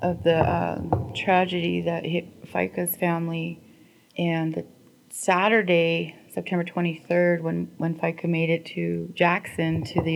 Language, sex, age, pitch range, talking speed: English, female, 30-49, 150-175 Hz, 130 wpm